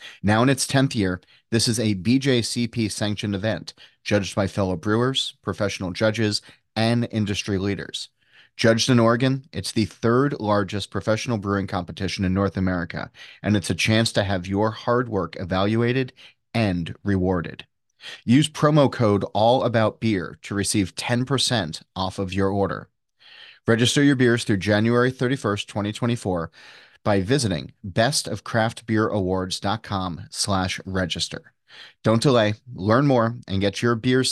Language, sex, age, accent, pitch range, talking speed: English, male, 30-49, American, 95-120 Hz, 130 wpm